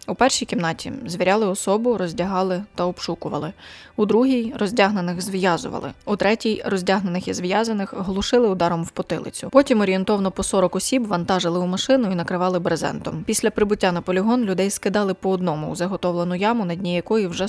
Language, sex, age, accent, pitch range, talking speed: Ukrainian, female, 20-39, native, 180-210 Hz, 160 wpm